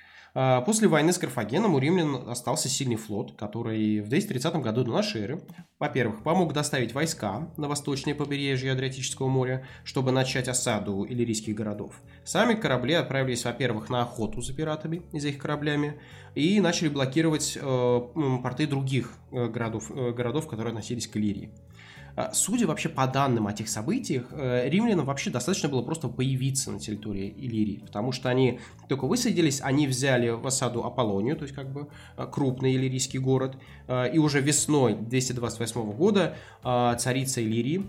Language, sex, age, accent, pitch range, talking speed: Russian, male, 20-39, native, 115-145 Hz, 145 wpm